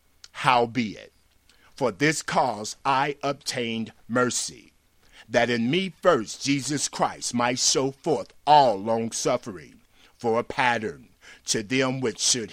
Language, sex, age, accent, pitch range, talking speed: English, male, 50-69, American, 115-150 Hz, 130 wpm